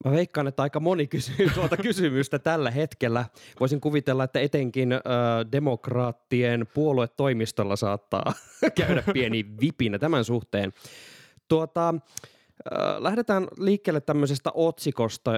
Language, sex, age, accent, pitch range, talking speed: Finnish, male, 20-39, native, 110-140 Hz, 115 wpm